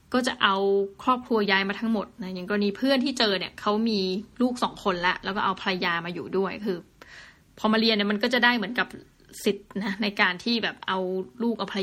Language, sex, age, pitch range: Thai, female, 20-39, 200-240 Hz